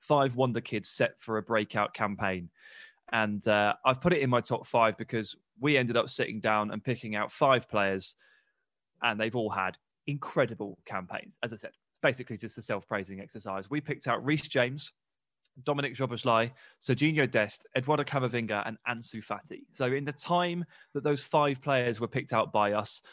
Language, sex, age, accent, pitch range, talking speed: English, male, 20-39, British, 110-145 Hz, 180 wpm